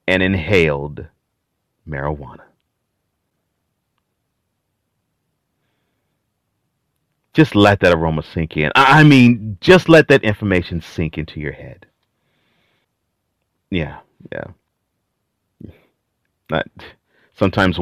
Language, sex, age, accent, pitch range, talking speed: English, male, 40-59, American, 90-125 Hz, 75 wpm